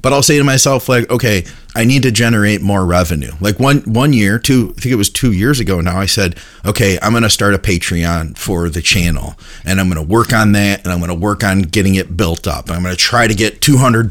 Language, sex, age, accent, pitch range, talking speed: English, male, 30-49, American, 95-120 Hz, 245 wpm